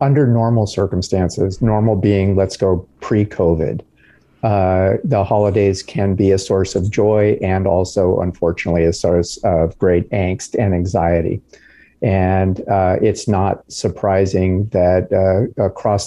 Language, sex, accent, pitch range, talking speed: English, male, American, 90-100 Hz, 125 wpm